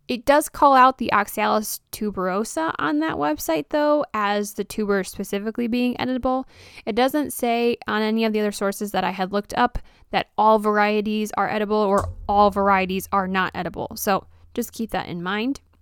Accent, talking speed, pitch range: American, 180 wpm, 205-250 Hz